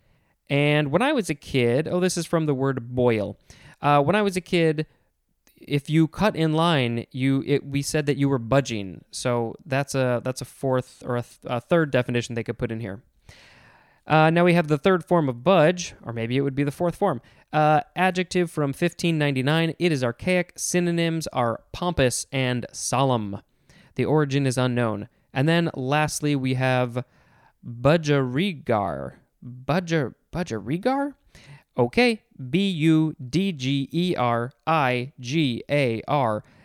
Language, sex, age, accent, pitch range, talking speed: English, male, 20-39, American, 125-165 Hz, 150 wpm